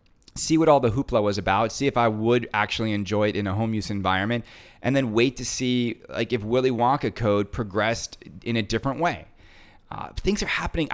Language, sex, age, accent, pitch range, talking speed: English, male, 30-49, American, 105-150 Hz, 205 wpm